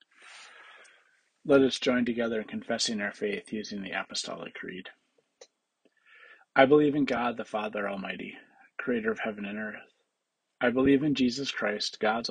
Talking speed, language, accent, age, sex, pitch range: 145 wpm, English, American, 40-59, male, 110-140 Hz